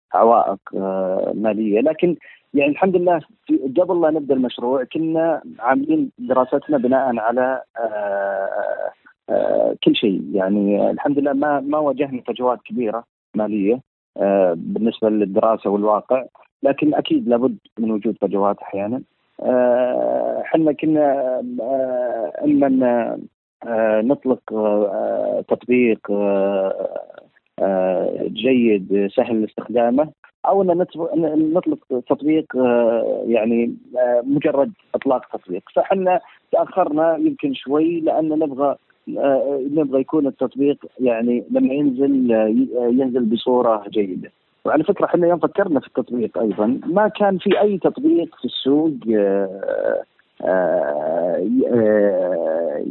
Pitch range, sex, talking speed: 110-160 Hz, male, 110 wpm